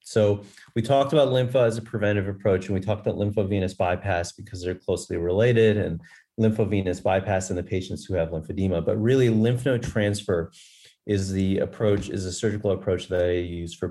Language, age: English, 30-49